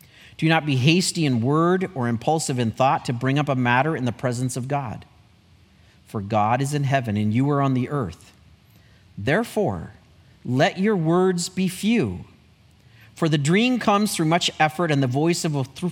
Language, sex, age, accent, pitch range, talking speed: English, male, 40-59, American, 100-145 Hz, 190 wpm